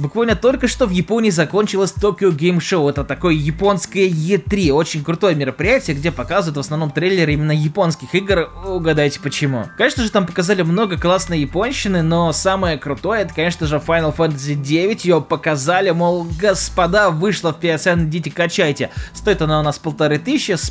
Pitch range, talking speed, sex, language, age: 145-185 Hz, 170 wpm, male, Russian, 20-39